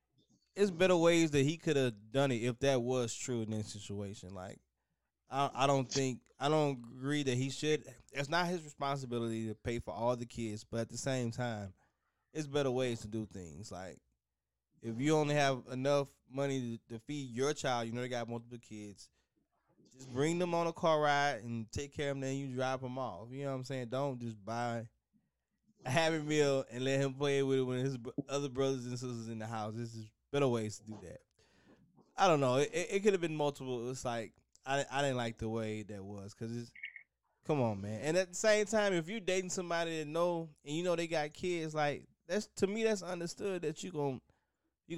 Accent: American